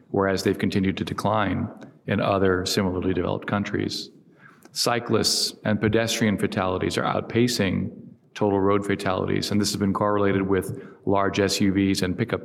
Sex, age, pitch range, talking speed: male, 40-59, 95-110 Hz, 140 wpm